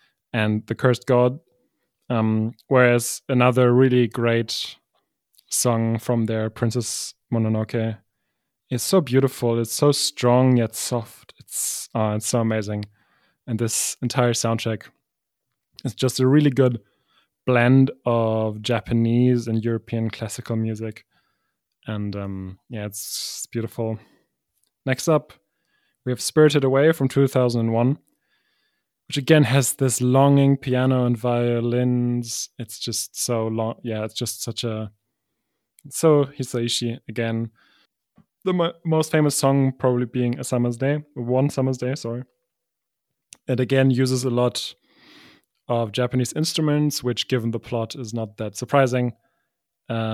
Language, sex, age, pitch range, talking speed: English, male, 20-39, 115-130 Hz, 130 wpm